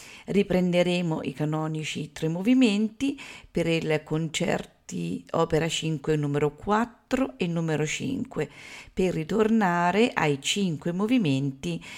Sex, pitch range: female, 150-190 Hz